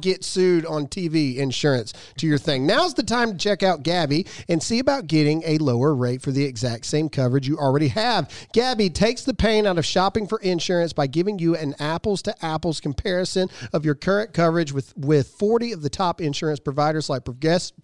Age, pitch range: 40-59, 150-210 Hz